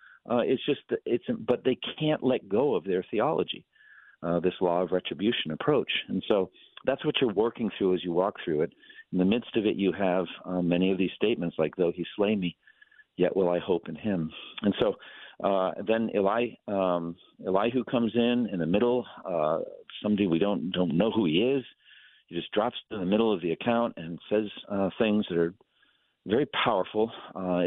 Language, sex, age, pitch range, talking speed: English, male, 50-69, 85-105 Hz, 200 wpm